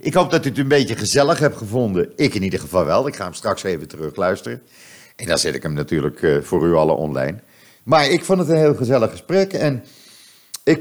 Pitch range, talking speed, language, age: 85-125 Hz, 230 wpm, Dutch, 50-69